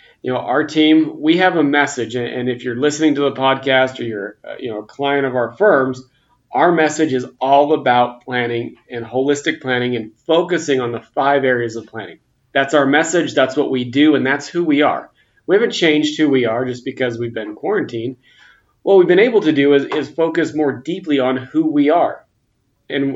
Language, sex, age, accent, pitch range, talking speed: English, male, 30-49, American, 130-150 Hz, 205 wpm